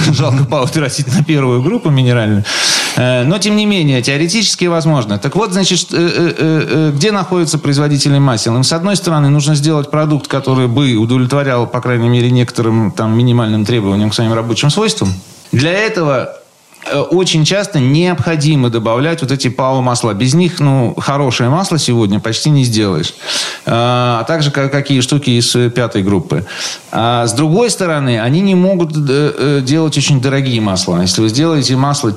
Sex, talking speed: male, 155 wpm